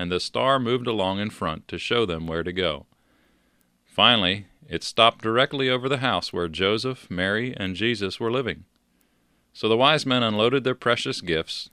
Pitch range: 90-120 Hz